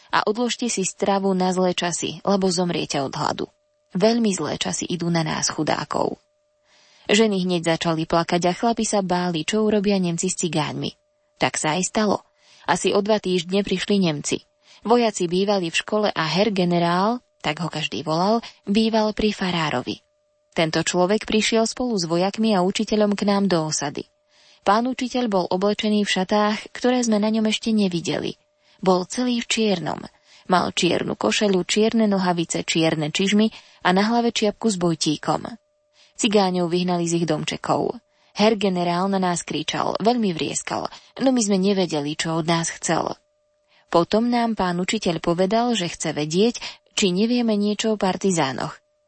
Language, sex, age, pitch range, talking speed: Slovak, female, 20-39, 175-225 Hz, 160 wpm